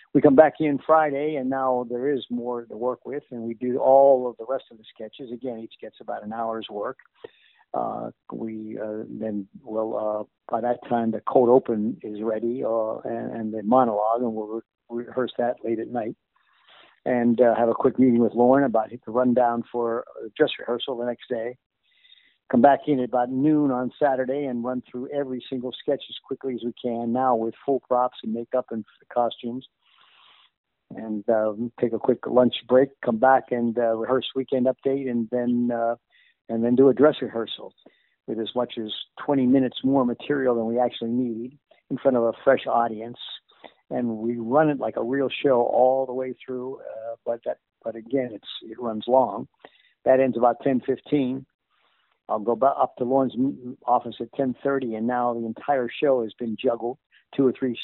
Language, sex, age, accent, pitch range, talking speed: English, male, 50-69, American, 115-130 Hz, 195 wpm